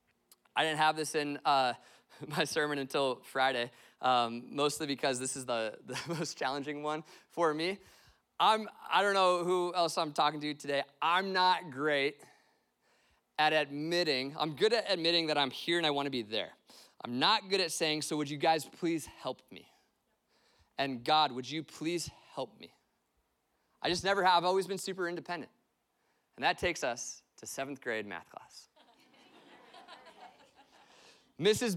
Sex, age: male, 20-39